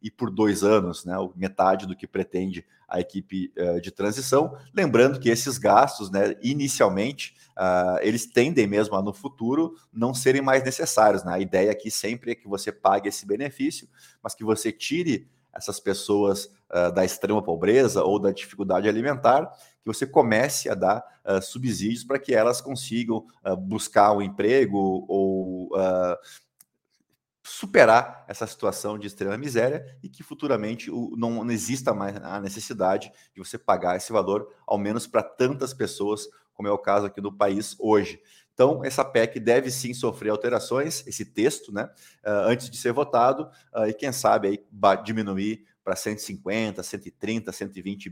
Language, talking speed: Portuguese, 150 wpm